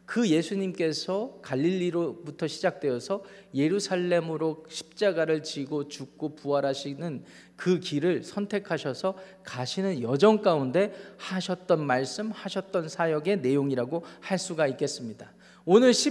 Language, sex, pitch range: Korean, male, 150-200 Hz